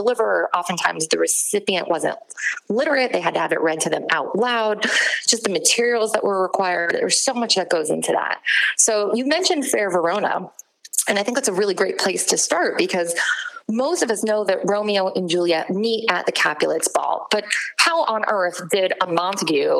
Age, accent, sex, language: 20-39, American, female, English